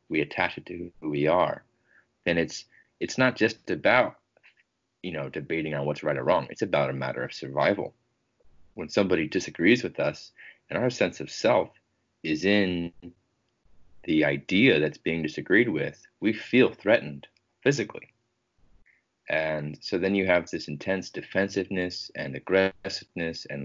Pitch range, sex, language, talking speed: 75-105 Hz, male, English, 150 wpm